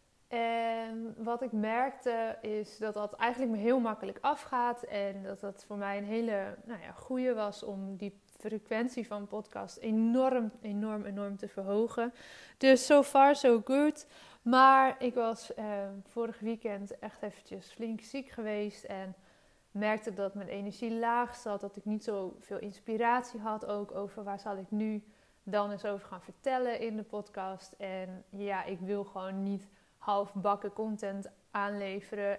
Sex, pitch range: female, 200-250 Hz